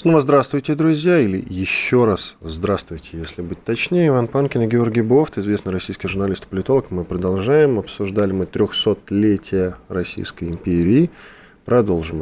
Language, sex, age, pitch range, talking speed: Russian, male, 20-39, 95-120 Hz, 140 wpm